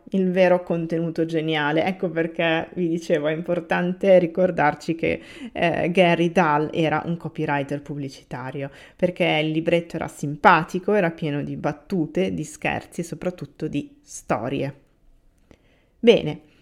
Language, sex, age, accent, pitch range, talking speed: Italian, female, 30-49, native, 160-195 Hz, 125 wpm